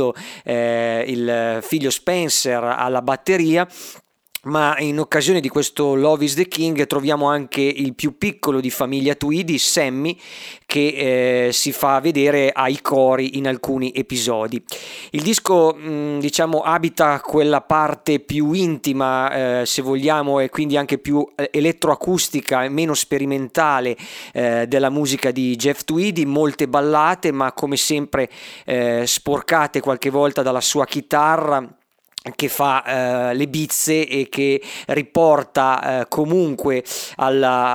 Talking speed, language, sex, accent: 130 wpm, Italian, male, native